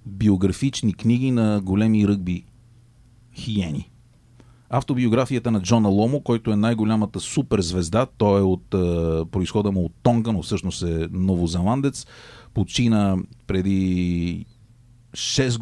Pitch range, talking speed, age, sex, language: 95-120 Hz, 110 wpm, 40-59, male, Bulgarian